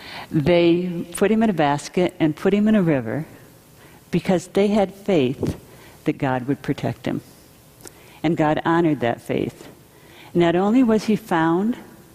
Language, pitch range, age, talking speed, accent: English, 155-205 Hz, 60-79, 155 wpm, American